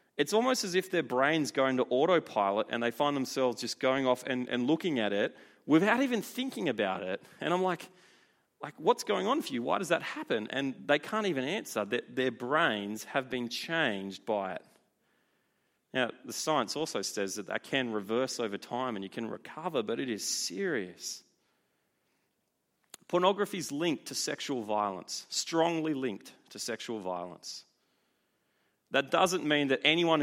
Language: English